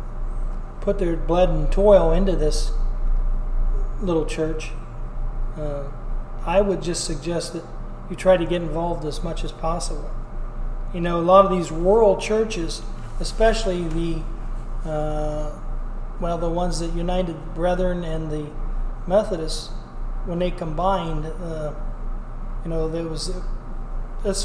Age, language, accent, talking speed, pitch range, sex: 40-59, English, American, 130 wpm, 150-175 Hz, male